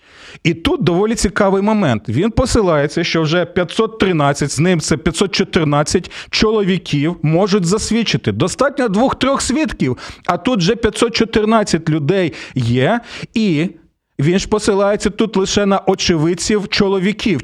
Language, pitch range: Ukrainian, 160-210 Hz